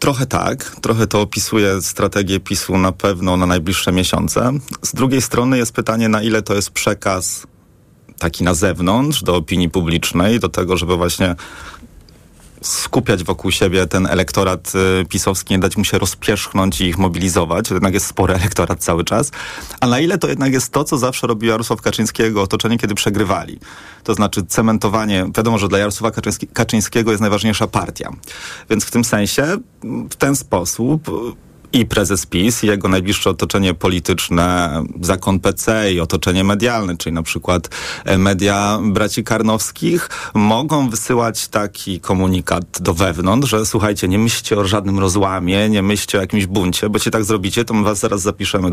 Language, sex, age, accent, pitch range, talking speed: Polish, male, 30-49, native, 95-110 Hz, 160 wpm